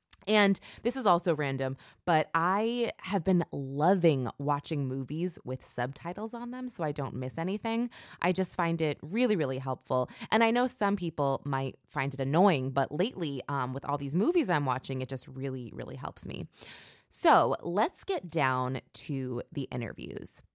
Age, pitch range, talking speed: 20-39, 135-190 Hz, 170 wpm